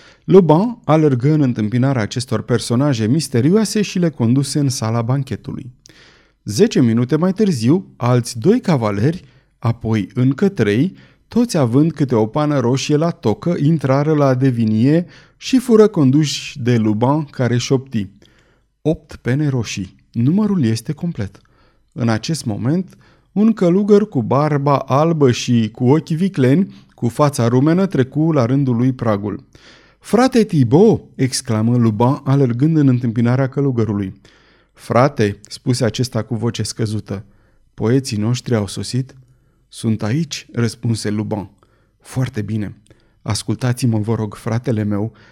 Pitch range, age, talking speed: 110-150 Hz, 30-49, 125 wpm